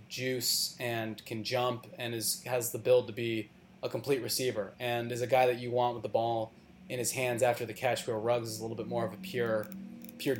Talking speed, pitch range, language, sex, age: 235 wpm, 120-135 Hz, English, male, 20-39